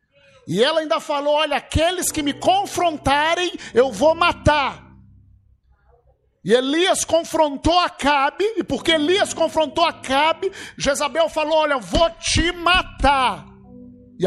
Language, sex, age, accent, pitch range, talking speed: Portuguese, male, 50-69, Brazilian, 235-300 Hz, 120 wpm